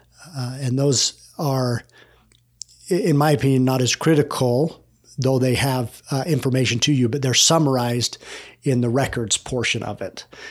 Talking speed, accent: 150 wpm, American